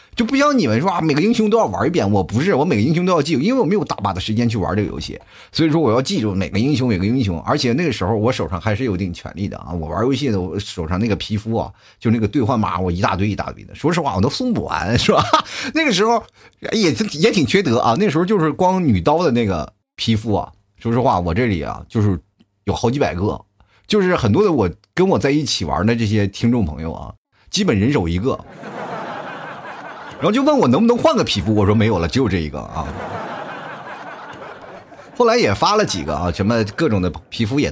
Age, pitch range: 30-49, 95-140 Hz